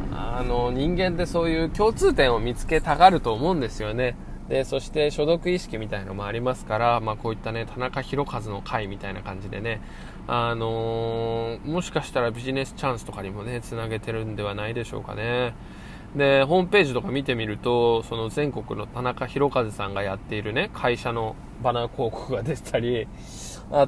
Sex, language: male, Japanese